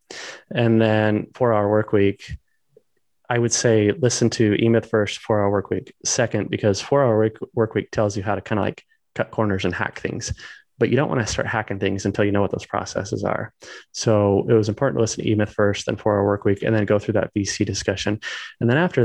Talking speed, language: 215 wpm, English